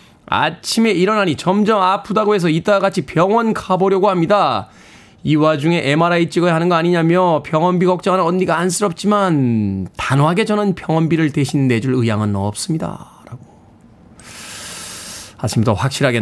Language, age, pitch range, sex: Korean, 20-39, 145-205 Hz, male